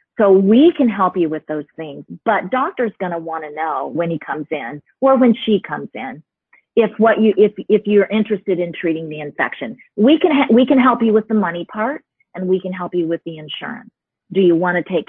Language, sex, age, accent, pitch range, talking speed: English, female, 40-59, American, 180-235 Hz, 235 wpm